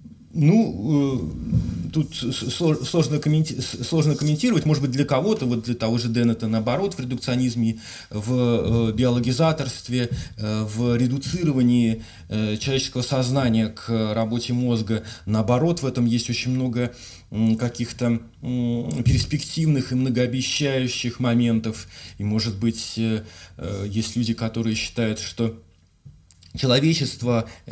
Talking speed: 100 wpm